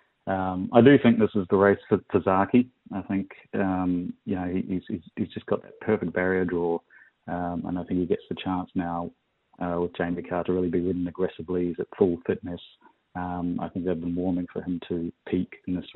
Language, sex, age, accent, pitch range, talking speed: English, male, 30-49, Australian, 90-95 Hz, 225 wpm